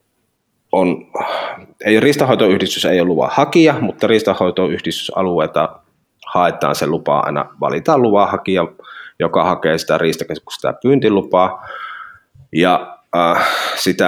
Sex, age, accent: male, 30-49, native